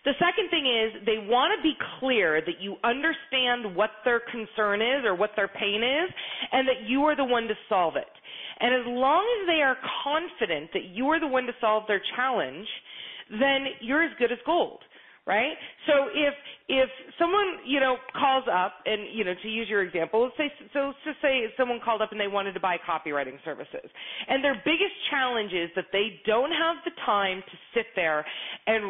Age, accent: 30-49, American